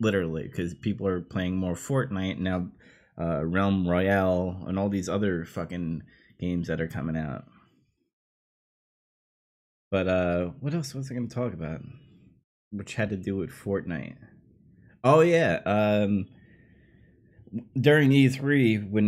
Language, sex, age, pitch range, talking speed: English, male, 20-39, 95-130 Hz, 135 wpm